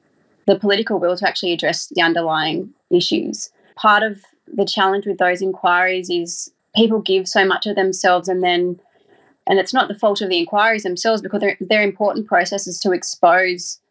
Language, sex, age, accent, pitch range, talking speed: English, female, 20-39, Australian, 180-210 Hz, 175 wpm